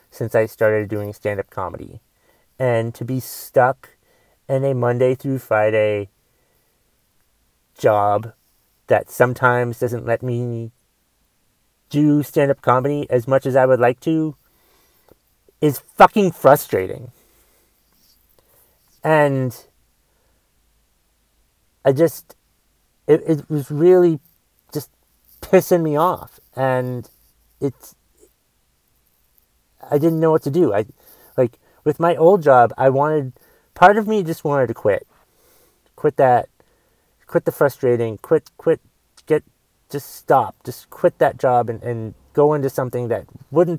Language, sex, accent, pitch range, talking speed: English, male, American, 120-170 Hz, 120 wpm